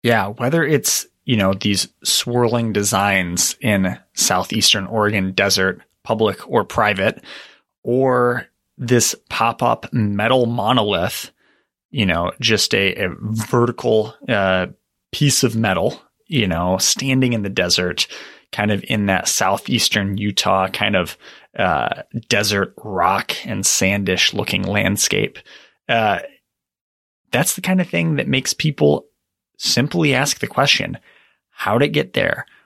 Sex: male